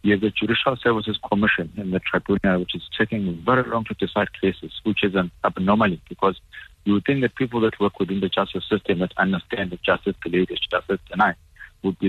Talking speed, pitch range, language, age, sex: 215 wpm, 95-110 Hz, English, 50-69, male